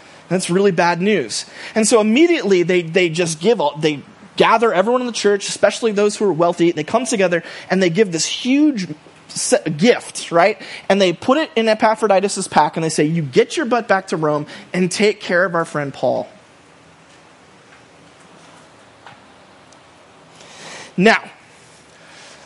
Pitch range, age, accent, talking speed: 165-225 Hz, 30-49, American, 150 wpm